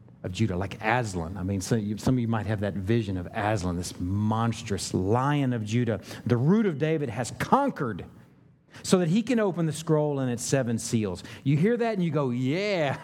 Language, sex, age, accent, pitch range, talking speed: English, male, 40-59, American, 110-160 Hz, 200 wpm